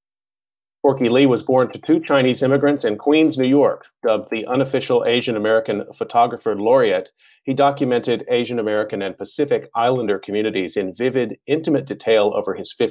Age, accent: 40-59, American